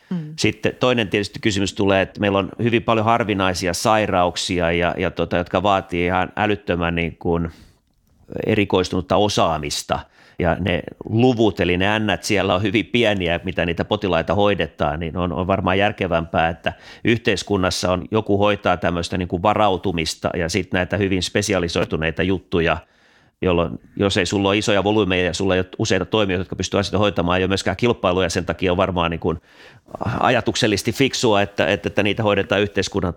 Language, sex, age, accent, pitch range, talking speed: Finnish, male, 30-49, native, 90-105 Hz, 160 wpm